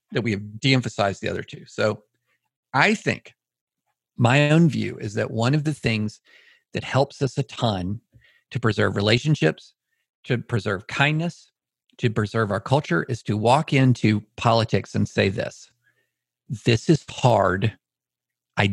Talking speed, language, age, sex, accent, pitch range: 150 wpm, English, 50-69, male, American, 115-150 Hz